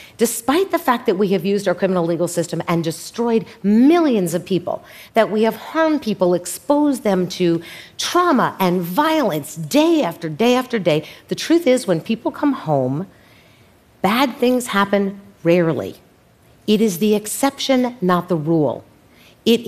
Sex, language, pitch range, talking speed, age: female, Arabic, 165-225 Hz, 155 wpm, 50-69